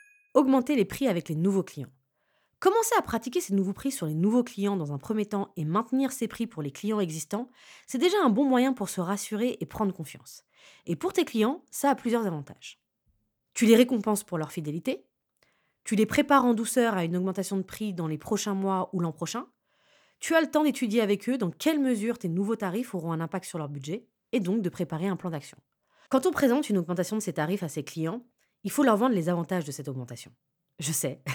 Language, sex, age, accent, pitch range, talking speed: French, female, 20-39, French, 170-250 Hz, 230 wpm